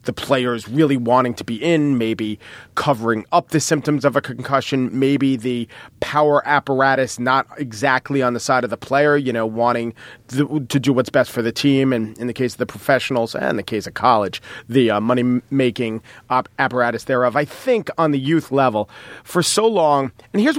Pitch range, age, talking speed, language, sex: 125-160 Hz, 40-59, 190 wpm, English, male